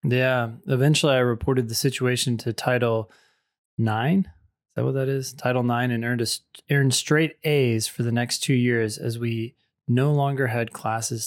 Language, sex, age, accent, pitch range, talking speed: English, male, 20-39, American, 115-140 Hz, 175 wpm